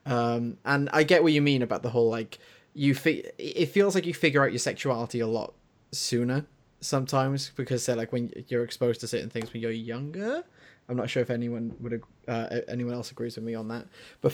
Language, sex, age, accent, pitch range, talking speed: English, male, 20-39, British, 115-140 Hz, 220 wpm